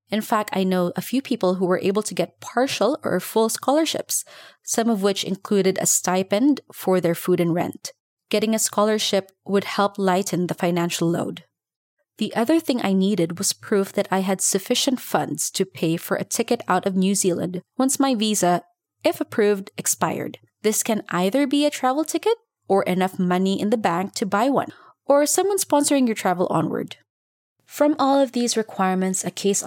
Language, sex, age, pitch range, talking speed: English, female, 20-39, 180-250 Hz, 185 wpm